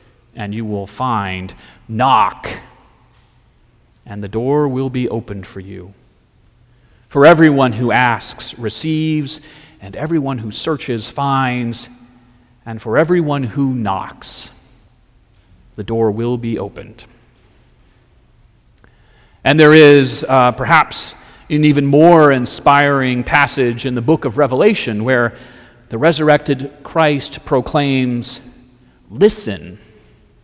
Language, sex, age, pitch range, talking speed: English, male, 40-59, 115-145 Hz, 110 wpm